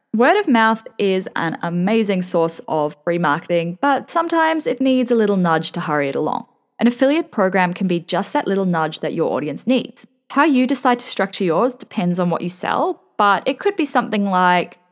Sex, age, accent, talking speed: female, 20-39, Australian, 205 wpm